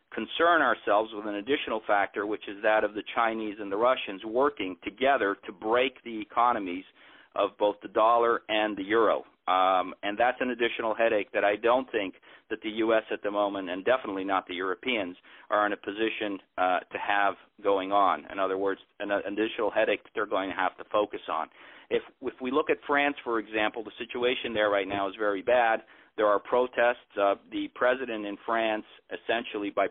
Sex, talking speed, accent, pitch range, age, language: male, 195 wpm, American, 100-115 Hz, 40-59, English